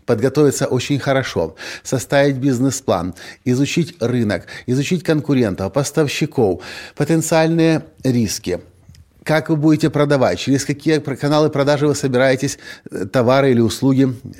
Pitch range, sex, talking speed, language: 110-140 Hz, male, 105 wpm, Russian